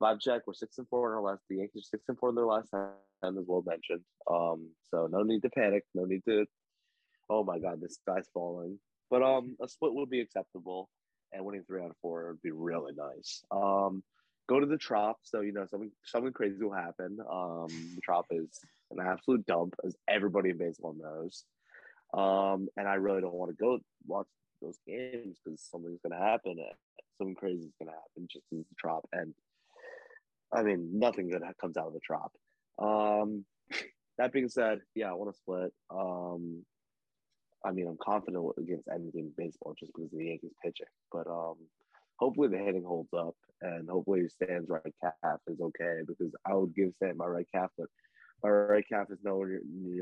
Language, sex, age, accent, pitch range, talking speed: English, male, 20-39, American, 85-105 Hz, 200 wpm